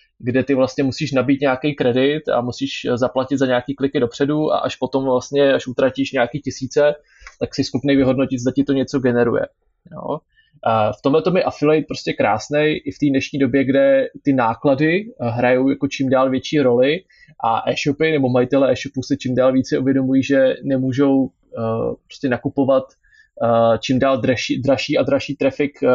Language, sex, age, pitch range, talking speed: Slovak, male, 20-39, 130-145 Hz, 170 wpm